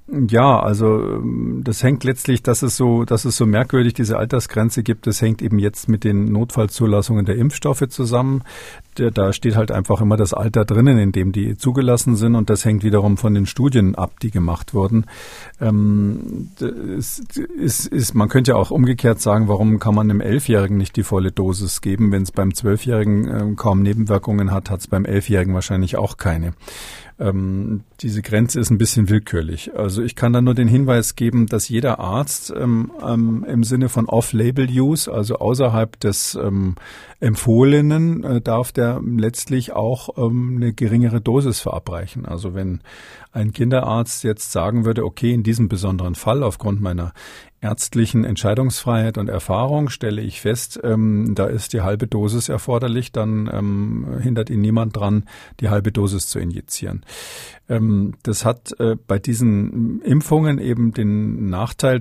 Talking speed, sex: 165 wpm, male